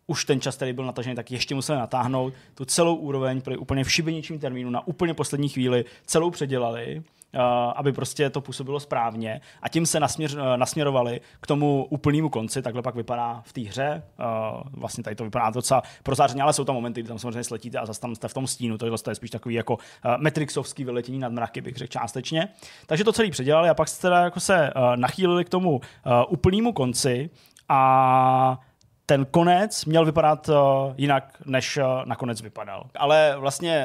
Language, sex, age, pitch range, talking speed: Czech, male, 20-39, 125-150 Hz, 185 wpm